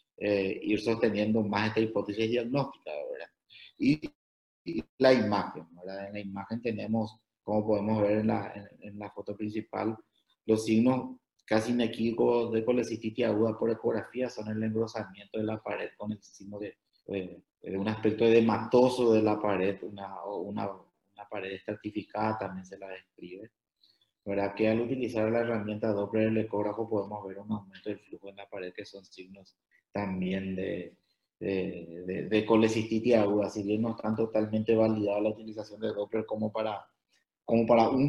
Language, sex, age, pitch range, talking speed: Spanish, male, 30-49, 100-115 Hz, 165 wpm